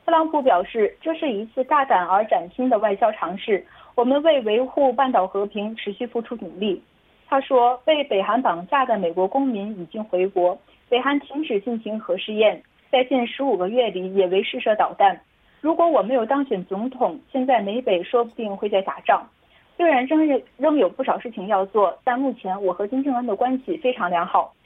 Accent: Chinese